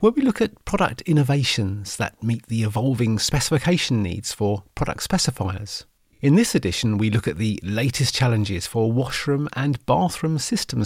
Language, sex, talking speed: English, male, 160 wpm